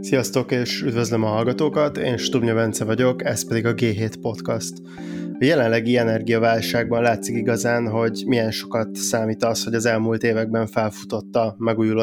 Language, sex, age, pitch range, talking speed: Hungarian, male, 20-39, 110-120 Hz, 155 wpm